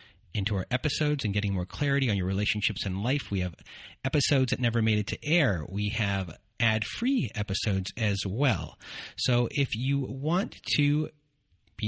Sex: male